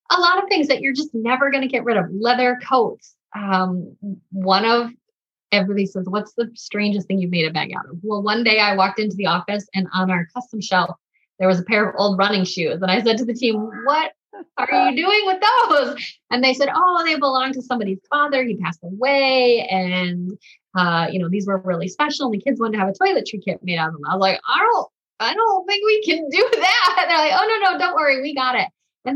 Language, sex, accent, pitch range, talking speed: English, female, American, 185-255 Hz, 245 wpm